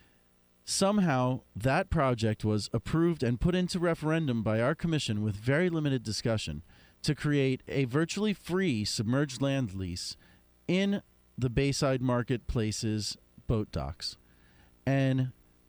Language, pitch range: English, 100-150 Hz